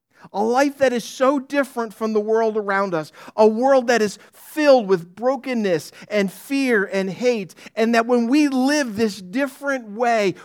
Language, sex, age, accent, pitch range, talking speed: English, male, 50-69, American, 170-255 Hz, 170 wpm